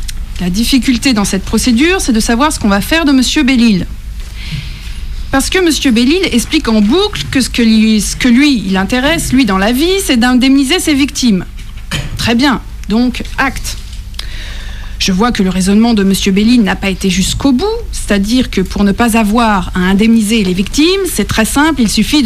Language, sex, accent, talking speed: French, female, French, 190 wpm